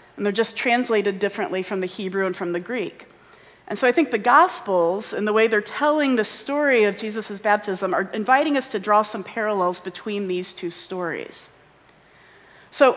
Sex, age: female, 40-59